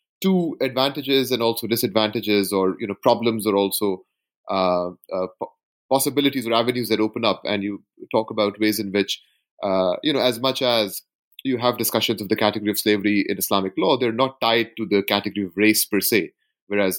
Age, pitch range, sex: 30-49, 105-125 Hz, male